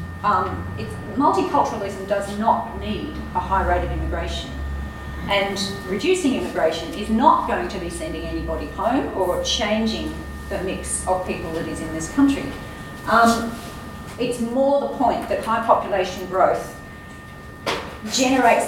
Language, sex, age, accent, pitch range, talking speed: English, female, 40-59, Australian, 175-240 Hz, 140 wpm